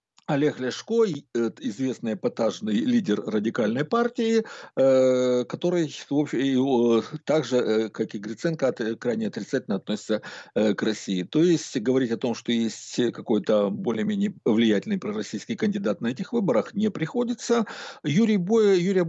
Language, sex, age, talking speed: Russian, male, 60-79, 125 wpm